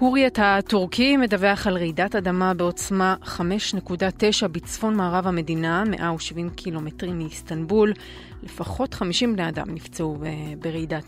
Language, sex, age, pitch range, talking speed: Hebrew, female, 30-49, 170-220 Hz, 110 wpm